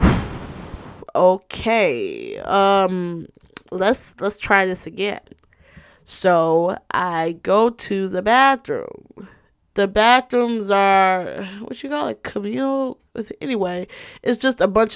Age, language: 20-39, English